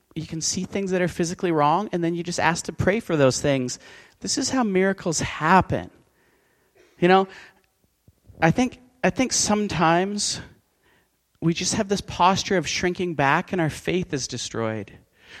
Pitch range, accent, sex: 150-210 Hz, American, male